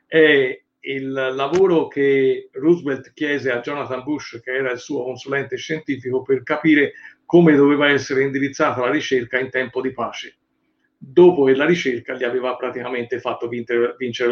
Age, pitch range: 50-69, 130-170 Hz